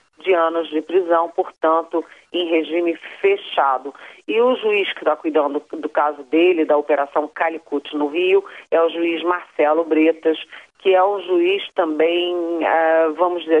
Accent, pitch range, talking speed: Brazilian, 155-190 Hz, 160 wpm